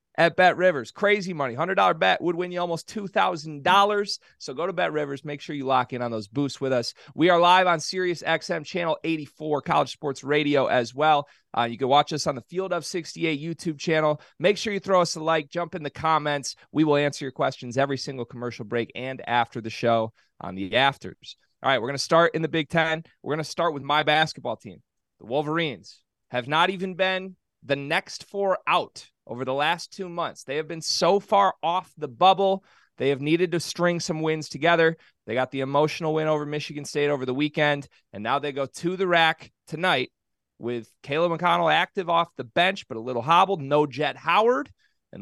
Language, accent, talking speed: English, American, 215 wpm